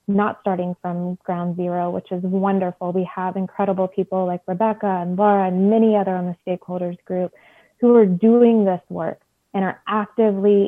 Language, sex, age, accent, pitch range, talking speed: English, female, 20-39, American, 185-210 Hz, 175 wpm